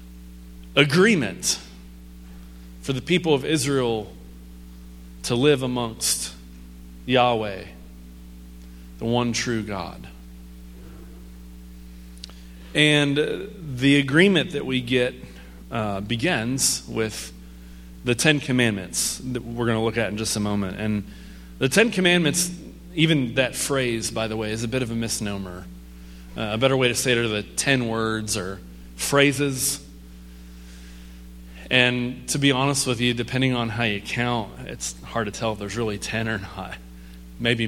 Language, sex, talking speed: English, male, 140 wpm